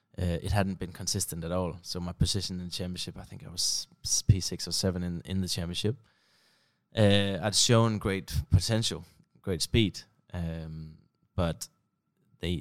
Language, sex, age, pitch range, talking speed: English, male, 20-39, 90-100 Hz, 170 wpm